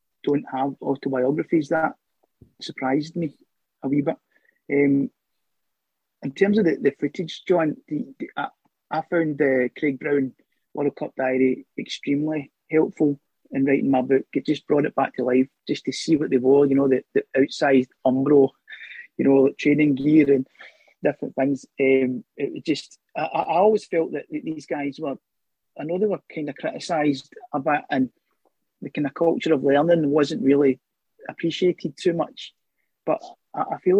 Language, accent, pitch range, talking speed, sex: English, British, 140-165 Hz, 160 wpm, male